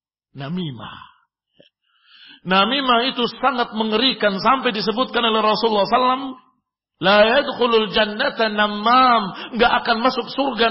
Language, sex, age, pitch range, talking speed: Indonesian, male, 50-69, 170-235 Hz, 100 wpm